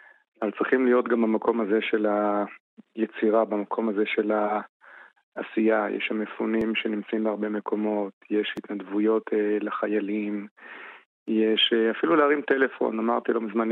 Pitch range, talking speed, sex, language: 110-135 Hz, 120 wpm, male, Hebrew